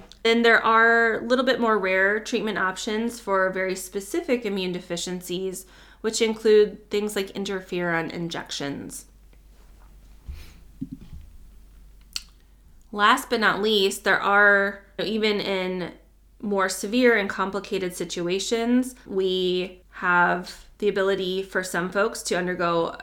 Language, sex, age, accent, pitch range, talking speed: English, female, 20-39, American, 180-220 Hz, 110 wpm